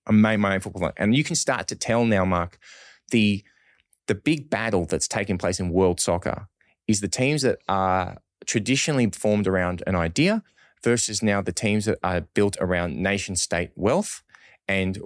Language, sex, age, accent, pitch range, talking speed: English, male, 20-39, Australian, 90-110 Hz, 185 wpm